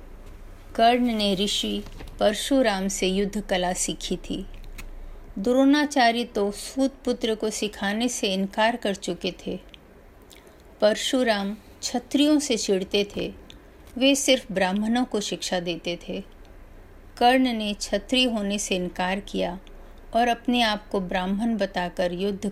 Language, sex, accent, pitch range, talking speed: Hindi, female, native, 180-235 Hz, 125 wpm